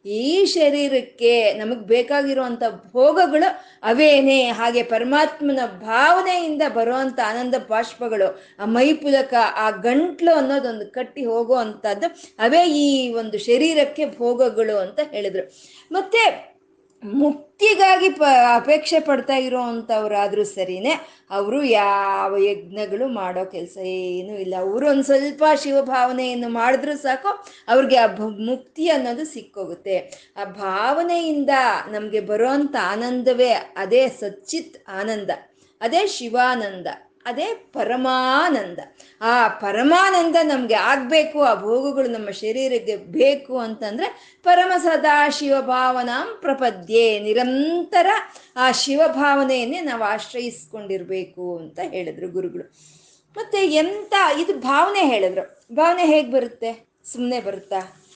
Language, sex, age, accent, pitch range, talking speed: Kannada, female, 20-39, native, 220-305 Hz, 95 wpm